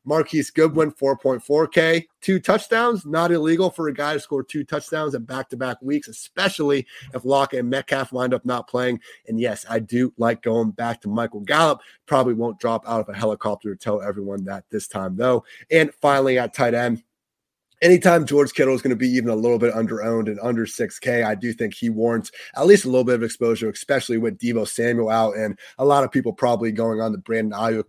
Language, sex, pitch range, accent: English, male, 115-150 Hz, American